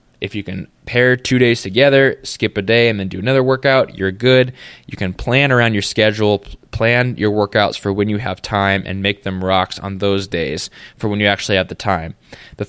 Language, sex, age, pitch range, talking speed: English, male, 20-39, 100-120 Hz, 220 wpm